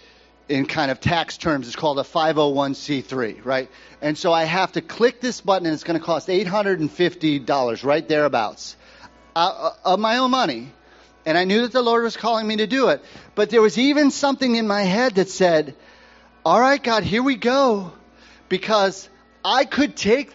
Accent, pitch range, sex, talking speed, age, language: American, 170-235 Hz, male, 185 wpm, 40-59, English